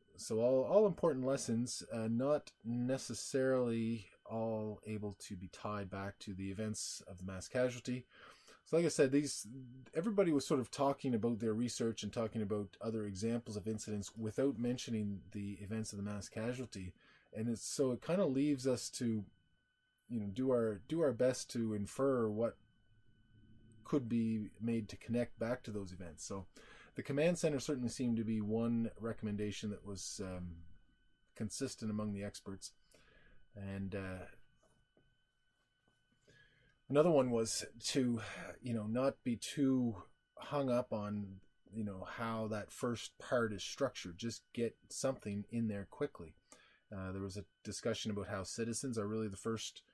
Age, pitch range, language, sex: 20-39, 105-125 Hz, English, male